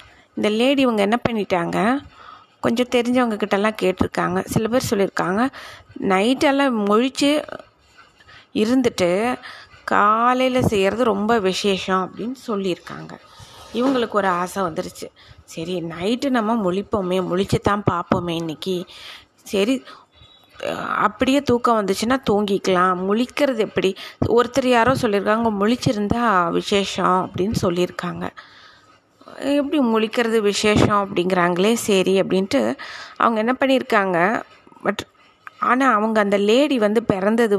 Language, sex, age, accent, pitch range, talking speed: Tamil, female, 20-39, native, 190-250 Hz, 100 wpm